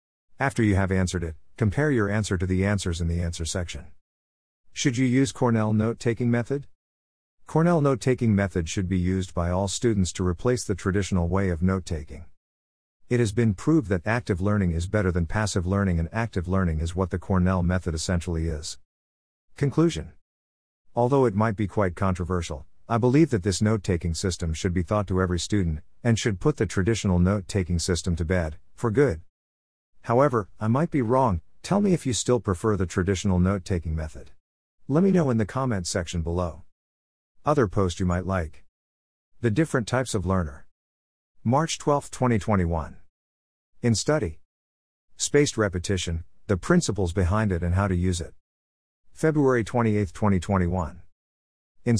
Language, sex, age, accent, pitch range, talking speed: English, male, 50-69, American, 80-115 Hz, 165 wpm